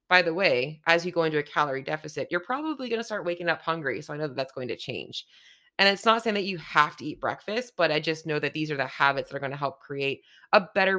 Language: English